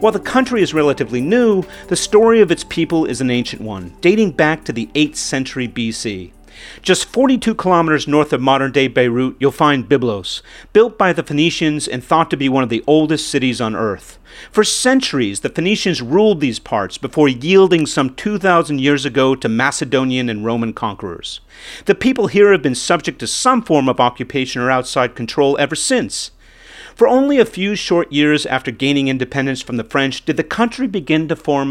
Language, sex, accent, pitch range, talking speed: English, male, American, 125-175 Hz, 185 wpm